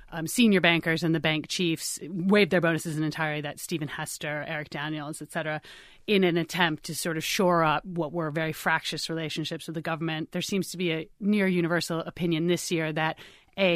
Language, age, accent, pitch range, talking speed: English, 30-49, American, 160-175 Hz, 205 wpm